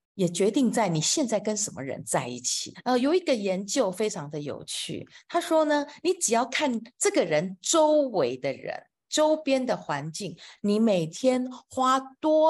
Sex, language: female, Chinese